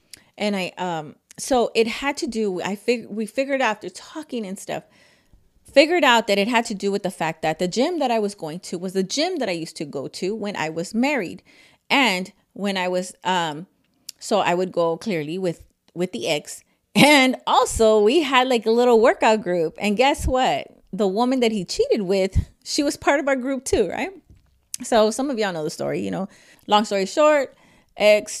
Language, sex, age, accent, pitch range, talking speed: English, female, 30-49, American, 180-245 Hz, 215 wpm